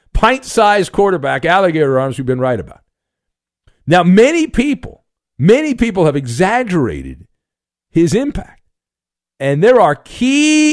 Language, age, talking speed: English, 50-69, 115 wpm